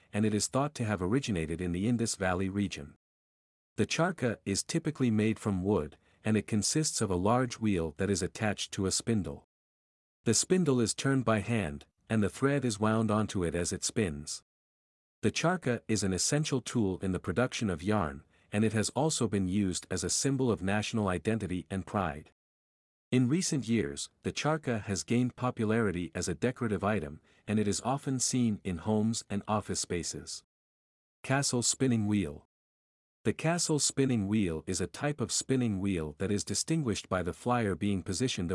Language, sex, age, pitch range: English, male, 50-69, 95-125 Hz